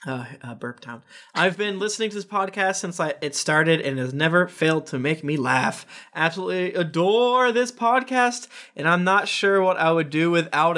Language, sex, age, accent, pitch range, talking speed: English, male, 20-39, American, 140-190 Hz, 200 wpm